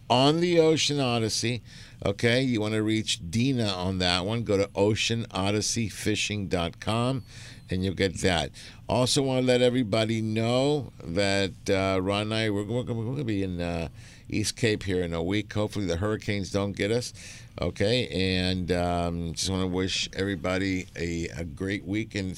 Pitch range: 90-120 Hz